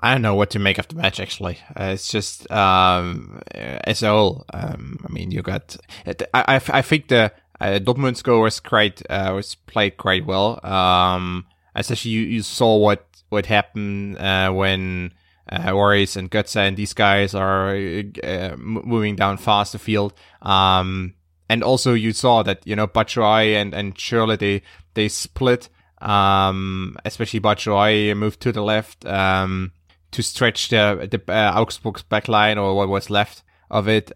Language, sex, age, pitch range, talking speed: English, male, 20-39, 95-110 Hz, 175 wpm